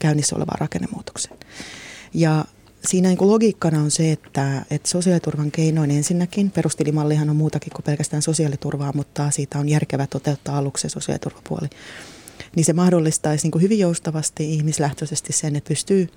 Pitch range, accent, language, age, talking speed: 145-165 Hz, native, Finnish, 30-49, 150 wpm